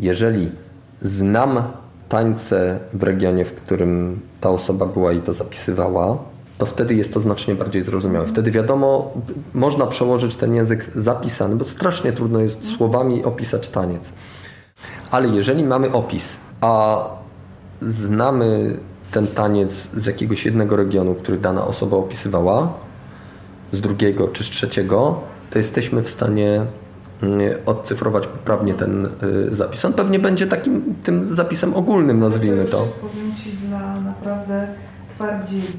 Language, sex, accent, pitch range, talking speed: Polish, male, native, 95-125 Hz, 125 wpm